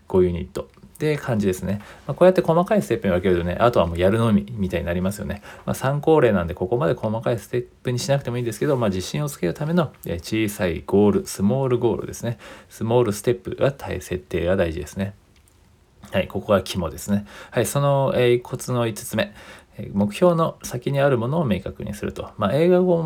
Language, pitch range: Japanese, 95-140 Hz